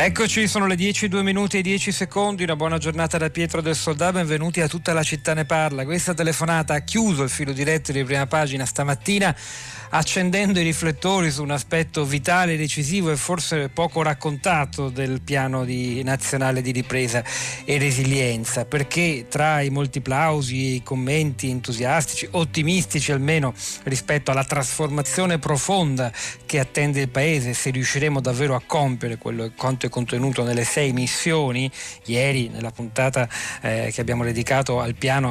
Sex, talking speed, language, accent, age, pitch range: male, 160 wpm, Italian, native, 40-59, 125-155 Hz